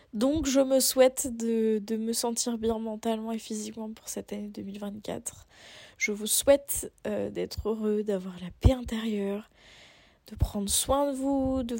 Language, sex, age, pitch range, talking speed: French, female, 20-39, 205-245 Hz, 165 wpm